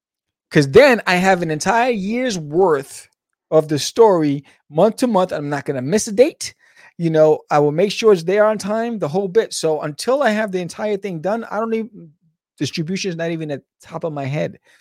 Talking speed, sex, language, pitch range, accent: 225 wpm, male, English, 140-205 Hz, American